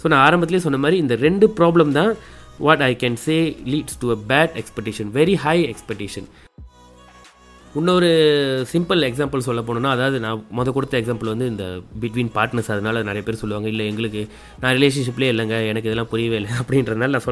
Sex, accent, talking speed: male, native, 175 wpm